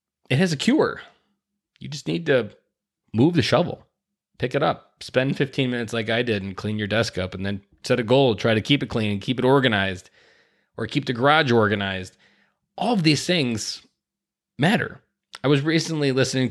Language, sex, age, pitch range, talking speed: English, male, 20-39, 105-150 Hz, 195 wpm